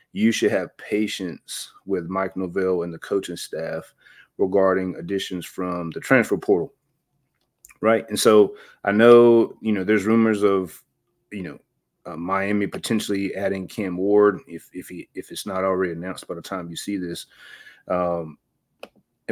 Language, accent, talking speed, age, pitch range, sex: English, American, 155 wpm, 30-49, 90-110 Hz, male